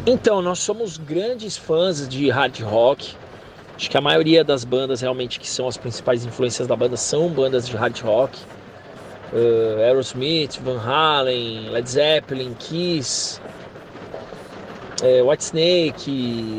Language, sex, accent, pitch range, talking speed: Portuguese, male, Brazilian, 145-220 Hz, 125 wpm